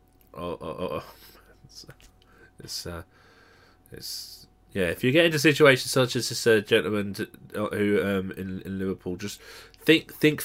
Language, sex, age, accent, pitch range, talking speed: English, male, 20-39, British, 90-110 Hz, 155 wpm